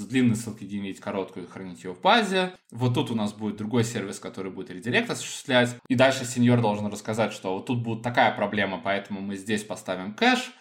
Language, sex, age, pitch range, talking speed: Russian, male, 20-39, 105-135 Hz, 205 wpm